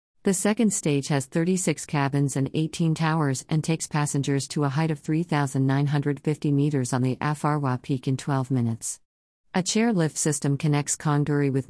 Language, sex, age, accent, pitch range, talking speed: English, female, 50-69, American, 135-160 Hz, 165 wpm